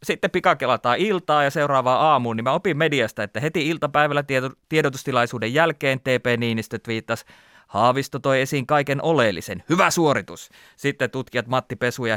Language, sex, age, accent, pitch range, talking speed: Finnish, male, 30-49, native, 130-170 Hz, 150 wpm